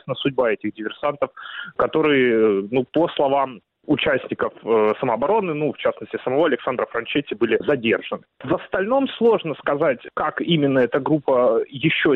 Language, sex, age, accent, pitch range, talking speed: Russian, male, 30-49, native, 125-170 Hz, 135 wpm